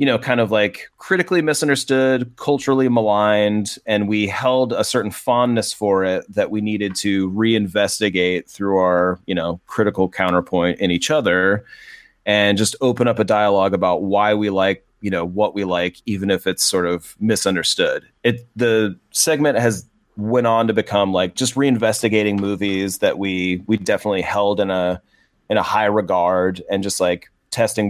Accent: American